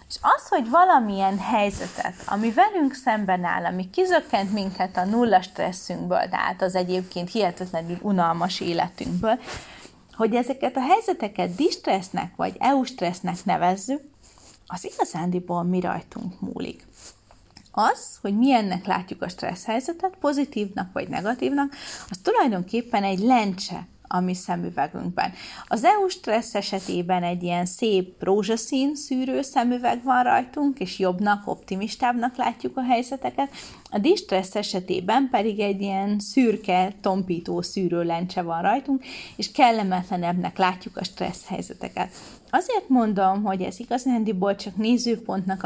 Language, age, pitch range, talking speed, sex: Hungarian, 30-49, 185-250 Hz, 125 wpm, female